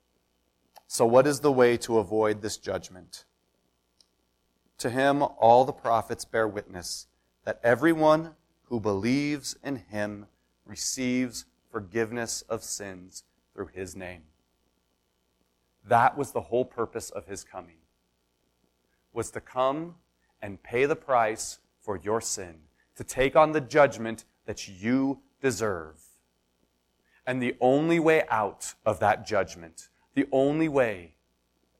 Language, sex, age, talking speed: English, male, 30-49, 125 wpm